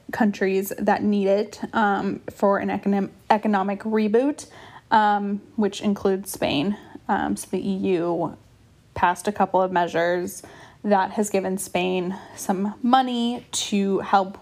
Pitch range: 190-235 Hz